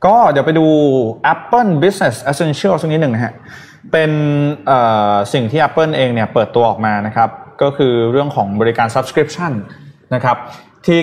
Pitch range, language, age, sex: 115-150 Hz, Thai, 20-39, male